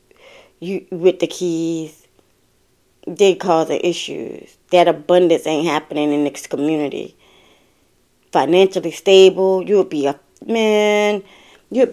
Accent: American